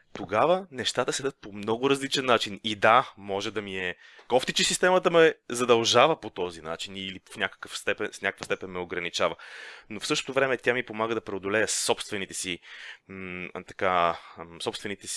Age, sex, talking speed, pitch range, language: 20-39, male, 170 wpm, 100-125 Hz, Bulgarian